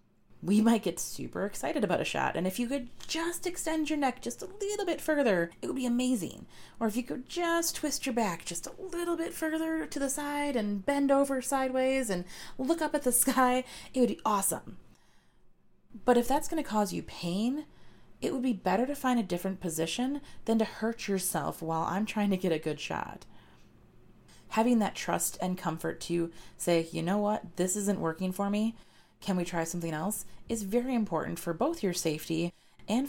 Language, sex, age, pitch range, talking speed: English, female, 30-49, 170-260 Hz, 200 wpm